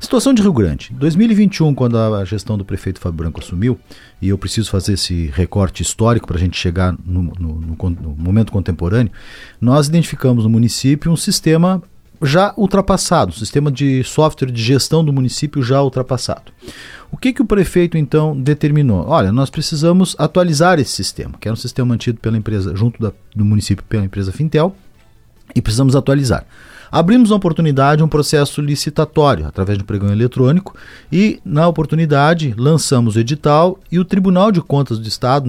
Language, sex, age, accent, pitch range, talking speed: Portuguese, male, 50-69, Brazilian, 105-160 Hz, 170 wpm